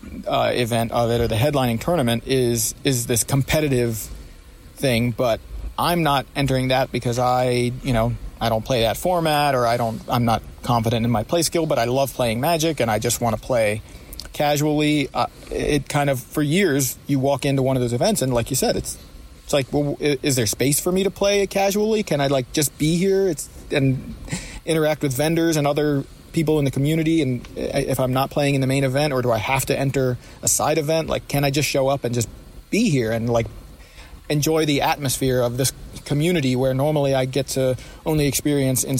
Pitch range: 120-145 Hz